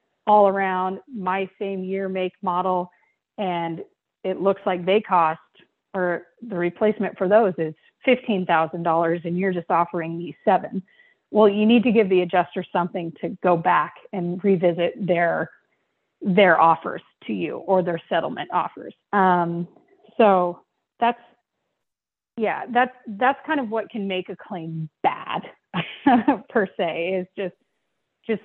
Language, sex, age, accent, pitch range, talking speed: English, female, 30-49, American, 180-225 Hz, 140 wpm